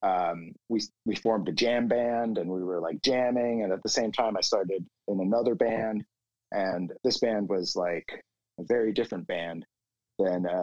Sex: male